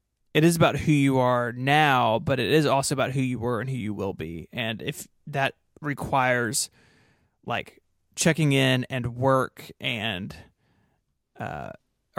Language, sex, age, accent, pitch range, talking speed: English, male, 20-39, American, 125-145 Hz, 155 wpm